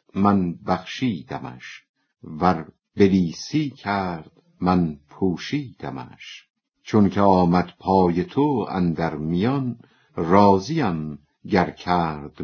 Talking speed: 80 wpm